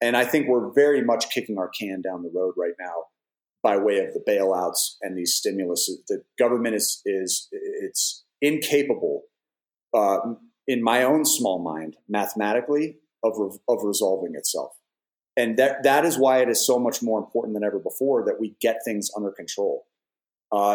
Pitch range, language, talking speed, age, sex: 105-170 Hz, English, 175 wpm, 40-59, male